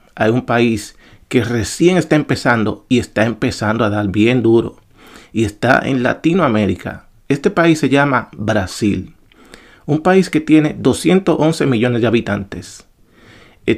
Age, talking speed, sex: 40-59, 140 wpm, male